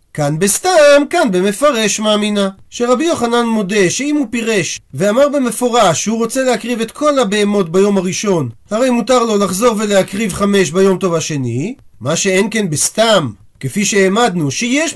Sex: male